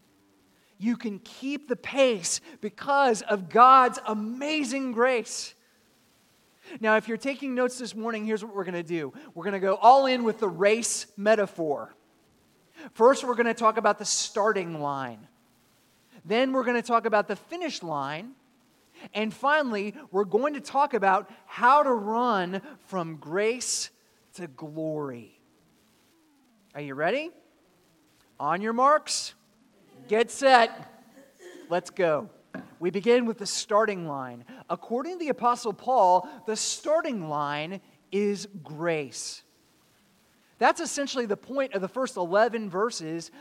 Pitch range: 190-255 Hz